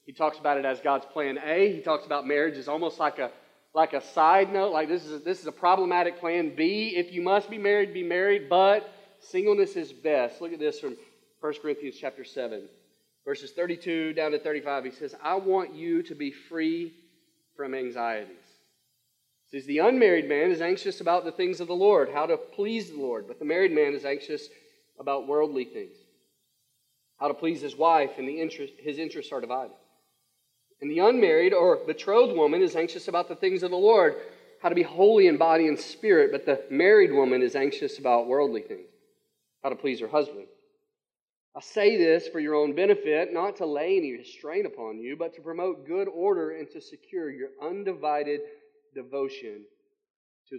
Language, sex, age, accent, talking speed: English, male, 30-49, American, 195 wpm